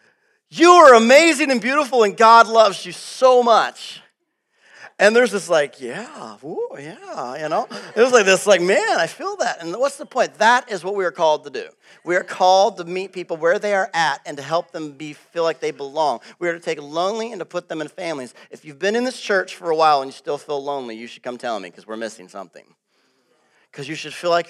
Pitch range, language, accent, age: 140-195 Hz, English, American, 40-59